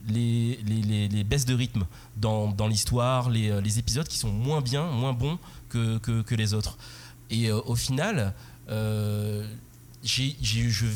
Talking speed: 170 wpm